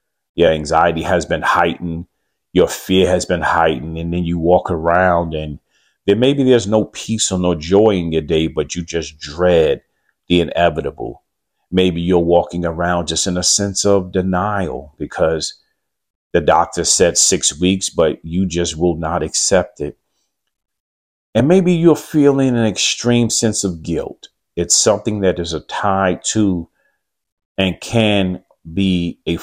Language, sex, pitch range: English, male, 80-95 Hz